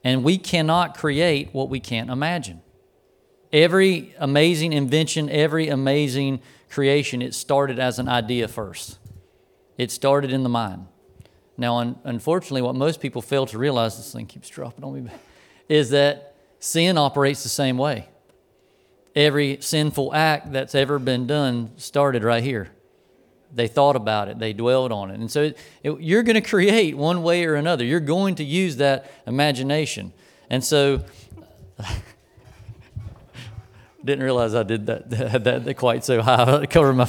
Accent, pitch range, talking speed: American, 120-150 Hz, 155 wpm